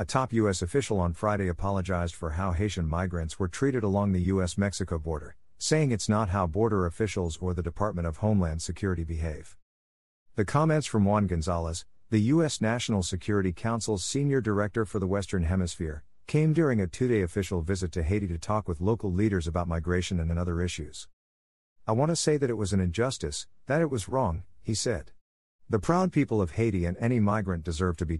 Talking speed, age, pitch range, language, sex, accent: 190 wpm, 50-69, 85-115 Hz, English, male, American